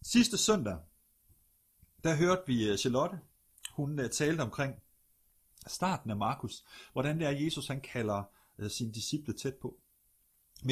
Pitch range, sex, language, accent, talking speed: 105-145 Hz, male, Danish, native, 145 wpm